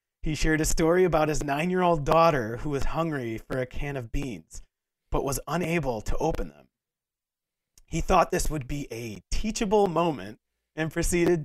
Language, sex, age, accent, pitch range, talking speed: English, male, 30-49, American, 130-170 Hz, 170 wpm